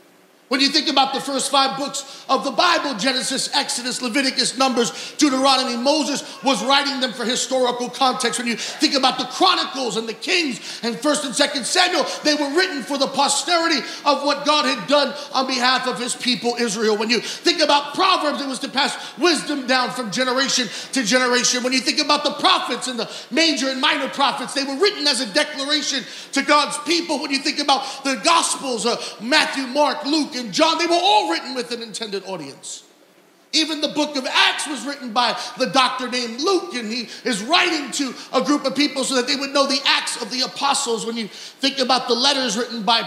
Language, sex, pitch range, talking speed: English, male, 230-290 Hz, 205 wpm